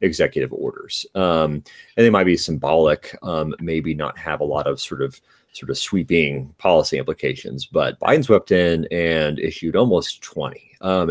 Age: 30-49